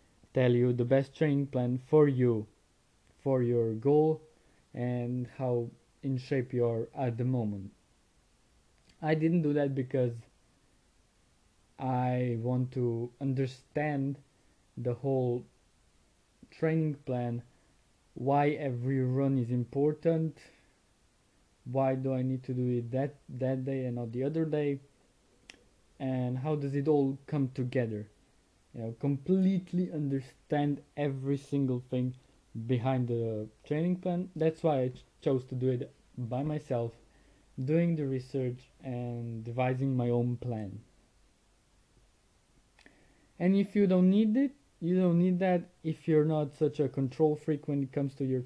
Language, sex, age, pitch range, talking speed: English, male, 20-39, 125-150 Hz, 135 wpm